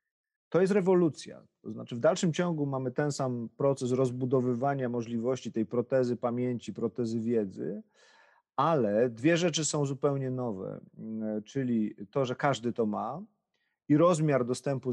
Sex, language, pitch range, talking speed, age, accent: male, Polish, 120-140 Hz, 135 wpm, 40-59, native